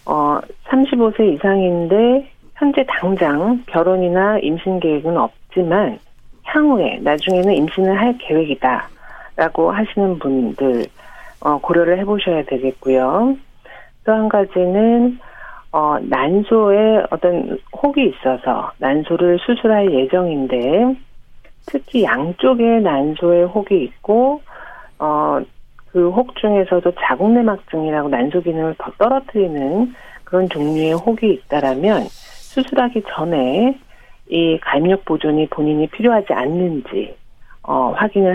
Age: 50-69